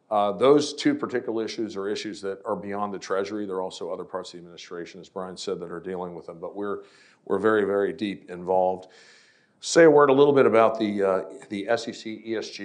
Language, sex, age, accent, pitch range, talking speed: English, male, 50-69, American, 100-115 Hz, 225 wpm